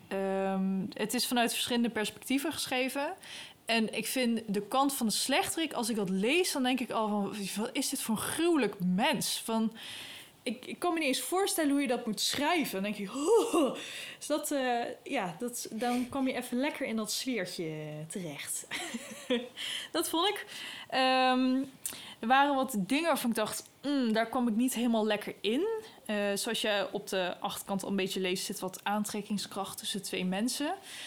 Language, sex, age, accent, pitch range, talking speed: Dutch, female, 20-39, Dutch, 200-260 Hz, 185 wpm